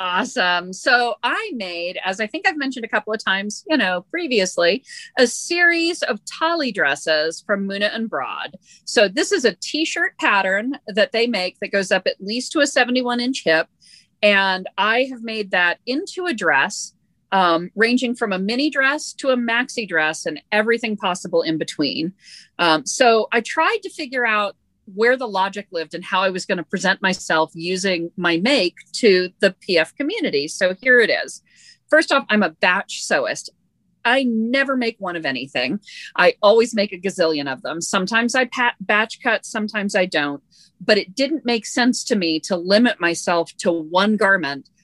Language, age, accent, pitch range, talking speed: English, 40-59, American, 180-245 Hz, 180 wpm